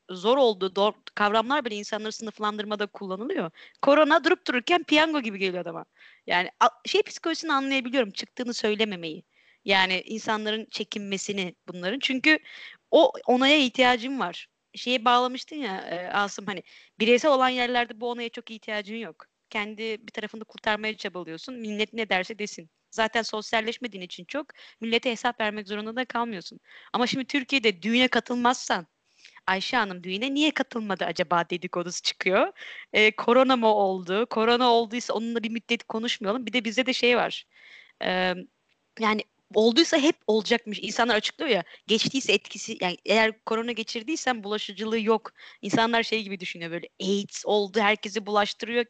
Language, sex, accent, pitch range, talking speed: Turkish, female, native, 205-250 Hz, 145 wpm